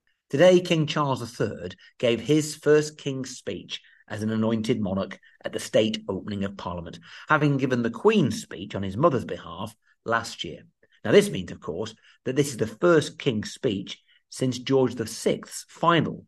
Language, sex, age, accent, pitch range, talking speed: English, male, 50-69, British, 105-150 Hz, 170 wpm